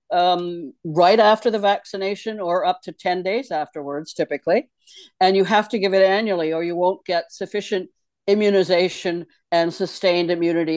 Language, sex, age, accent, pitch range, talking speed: English, female, 60-79, American, 170-220 Hz, 155 wpm